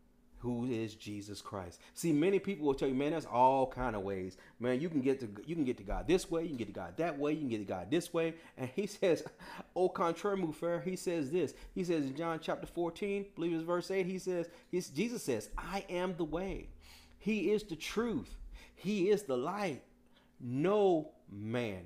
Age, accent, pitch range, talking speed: 40-59, American, 120-175 Hz, 220 wpm